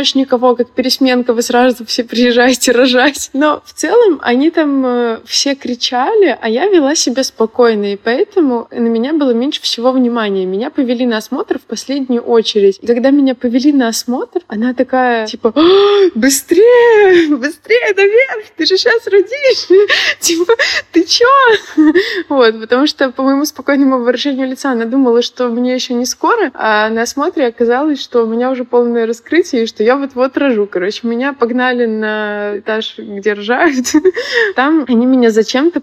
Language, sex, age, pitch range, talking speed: Russian, female, 20-39, 235-305 Hz, 160 wpm